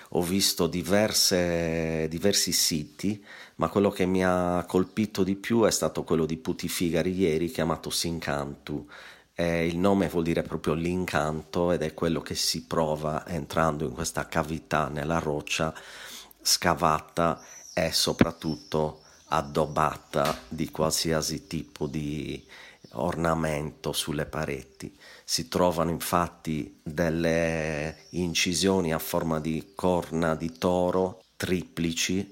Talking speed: 115 wpm